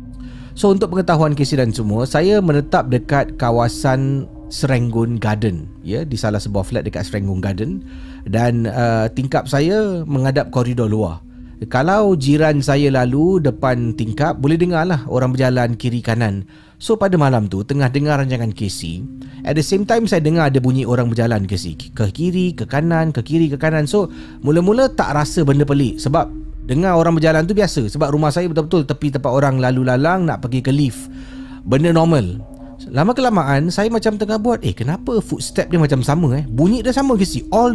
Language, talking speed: Malay, 175 wpm